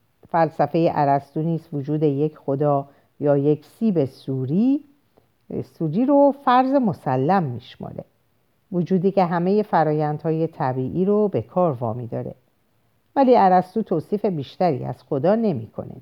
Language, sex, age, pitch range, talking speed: Persian, female, 50-69, 135-210 Hz, 125 wpm